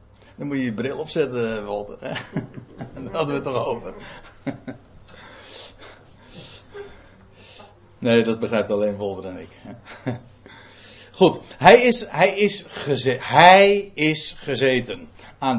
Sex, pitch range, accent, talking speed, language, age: male, 105-145 Hz, Dutch, 115 wpm, Dutch, 60-79